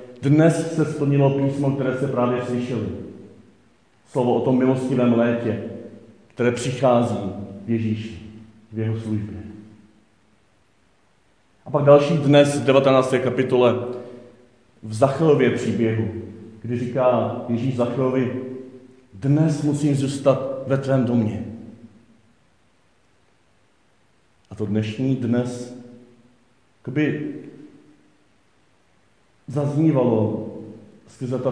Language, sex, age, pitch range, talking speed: Czech, male, 40-59, 115-135 Hz, 90 wpm